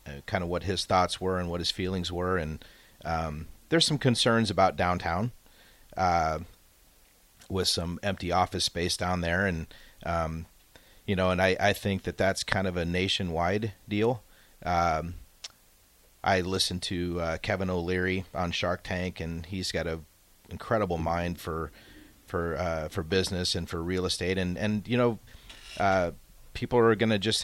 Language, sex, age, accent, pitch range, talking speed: English, male, 30-49, American, 85-100 Hz, 165 wpm